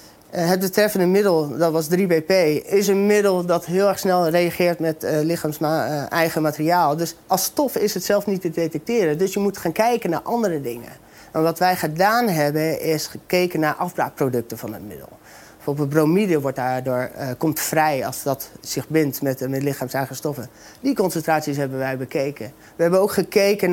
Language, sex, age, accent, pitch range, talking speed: Dutch, male, 30-49, Dutch, 145-190 Hz, 180 wpm